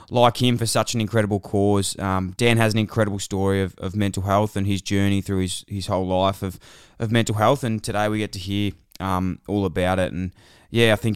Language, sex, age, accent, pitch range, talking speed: English, male, 20-39, Australian, 90-105 Hz, 230 wpm